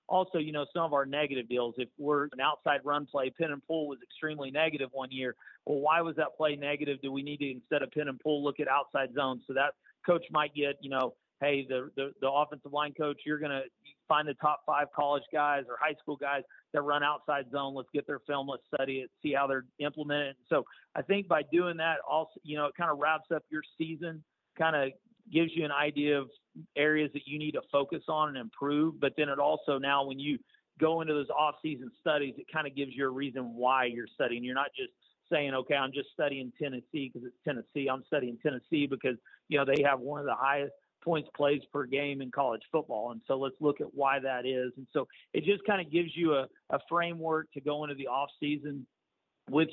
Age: 40-59